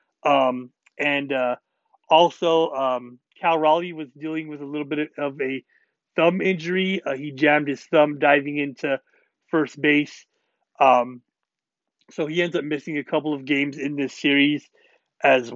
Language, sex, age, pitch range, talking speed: English, male, 30-49, 145-170 Hz, 155 wpm